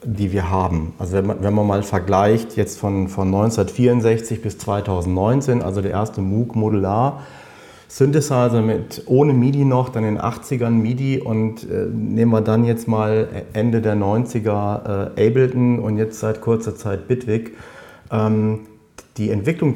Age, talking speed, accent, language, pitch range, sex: 40-59, 160 wpm, German, German, 100-120 Hz, male